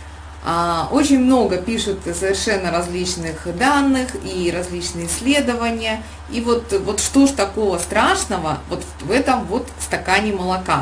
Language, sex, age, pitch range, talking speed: Russian, female, 20-39, 180-250 Hz, 120 wpm